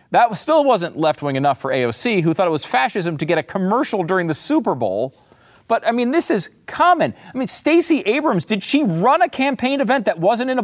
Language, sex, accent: English, male, American